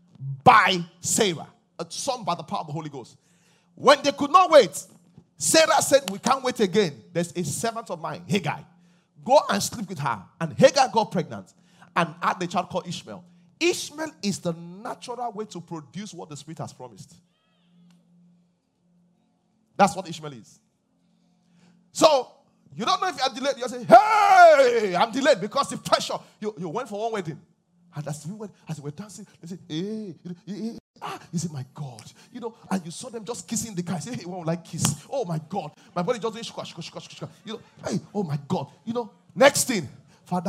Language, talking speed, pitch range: English, 210 wpm, 170-220 Hz